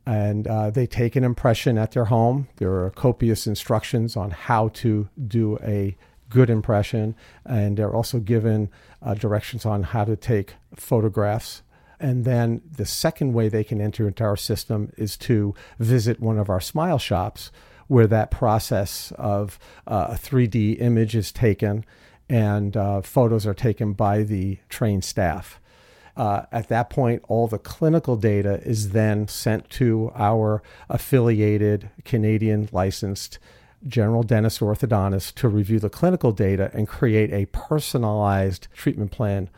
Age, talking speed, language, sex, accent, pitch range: 50-69, 150 wpm, English, male, American, 105-120 Hz